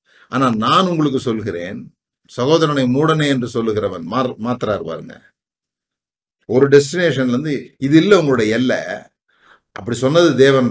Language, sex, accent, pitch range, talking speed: Tamil, male, native, 120-150 Hz, 110 wpm